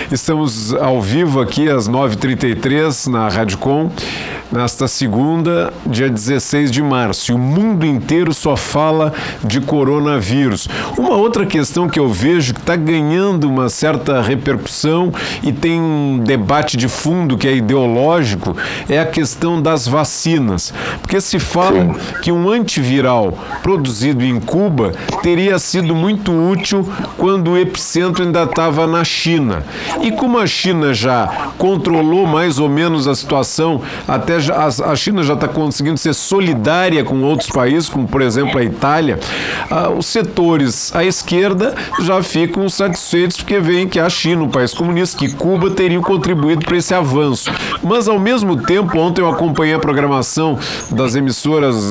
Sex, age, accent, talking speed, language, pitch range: male, 50-69, Brazilian, 145 wpm, Portuguese, 135-175 Hz